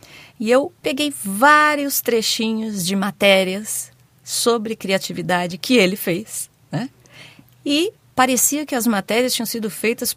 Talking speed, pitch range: 125 wpm, 185-255 Hz